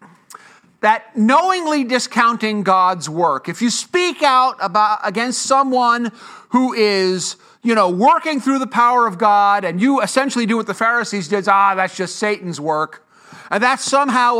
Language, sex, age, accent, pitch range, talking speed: English, male, 50-69, American, 185-255 Hz, 160 wpm